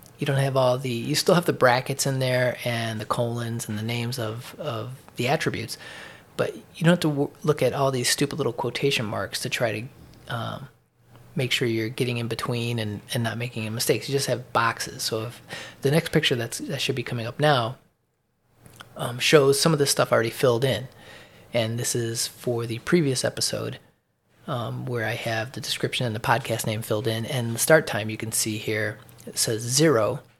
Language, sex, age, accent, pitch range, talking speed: English, male, 20-39, American, 115-140 Hz, 210 wpm